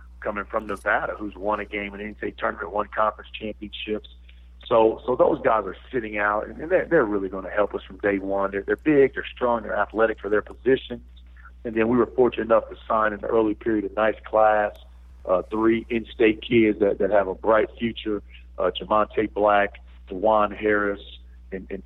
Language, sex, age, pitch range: English, male, 40-59, 95-110 Hz